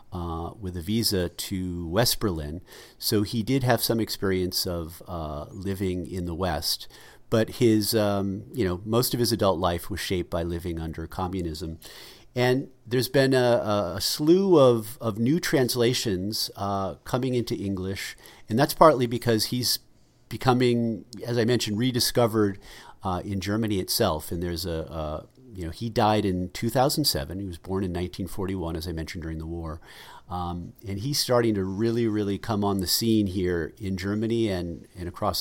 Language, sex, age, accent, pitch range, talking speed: English, male, 40-59, American, 90-115 Hz, 170 wpm